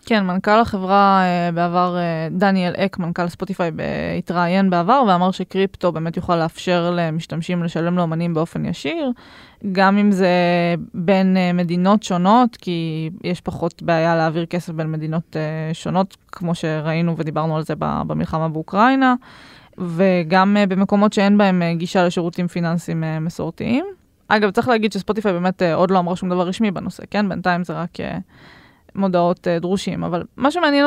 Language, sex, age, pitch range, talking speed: Hebrew, female, 20-39, 175-205 Hz, 140 wpm